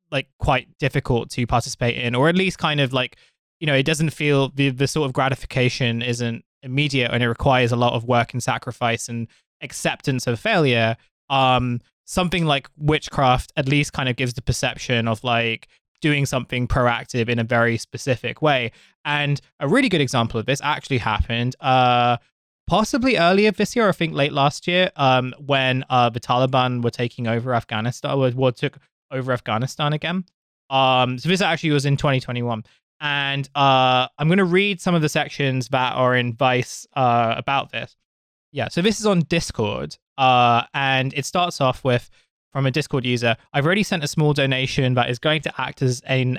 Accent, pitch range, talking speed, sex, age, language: British, 120-150 Hz, 190 wpm, male, 20-39, English